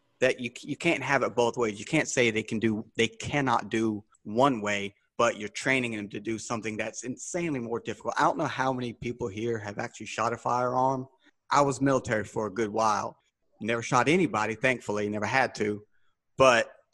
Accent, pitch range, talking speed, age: American, 110-135 Hz, 200 wpm, 30-49